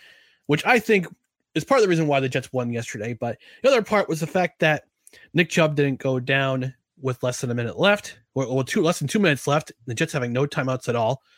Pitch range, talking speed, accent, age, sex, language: 130-185 Hz, 250 wpm, American, 30-49, male, English